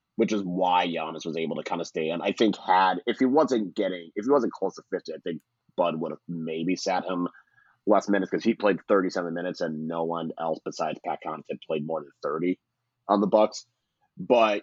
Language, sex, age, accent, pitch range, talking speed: English, male, 30-49, American, 90-110 Hz, 225 wpm